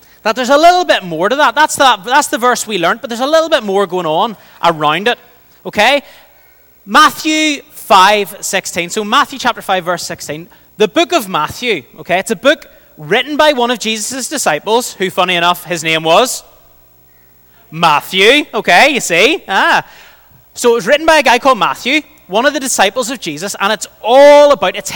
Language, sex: English, male